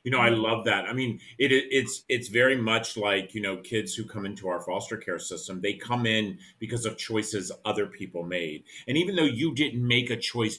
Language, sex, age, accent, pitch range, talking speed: English, male, 40-59, American, 95-120 Hz, 225 wpm